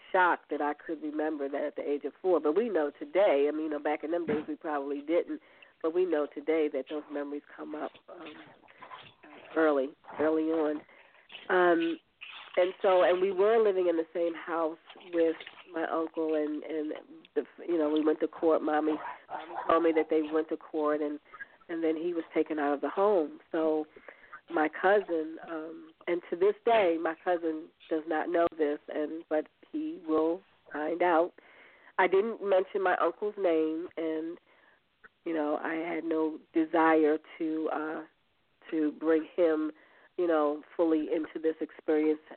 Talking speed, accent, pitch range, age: 170 wpm, American, 155-175 Hz, 40-59